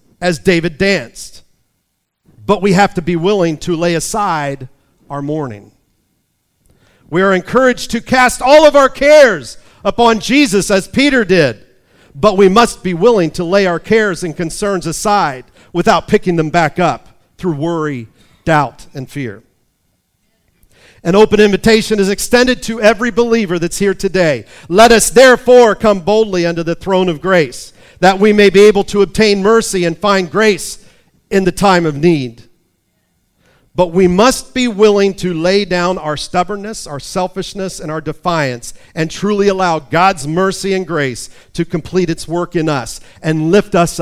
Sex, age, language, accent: male, 50-69, English, American